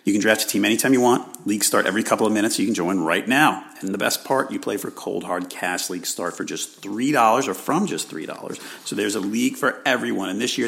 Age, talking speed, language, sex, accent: 40-59, 270 wpm, English, male, American